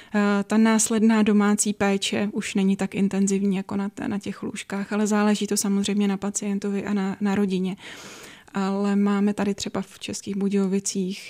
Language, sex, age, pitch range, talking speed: Czech, female, 20-39, 195-205 Hz, 155 wpm